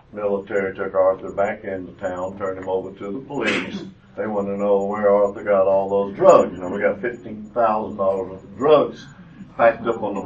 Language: English